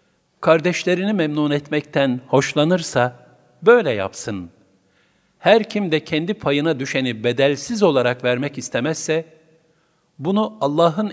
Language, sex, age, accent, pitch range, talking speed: Turkish, male, 50-69, native, 120-160 Hz, 95 wpm